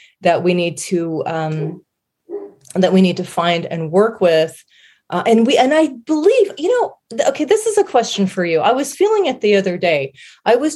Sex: female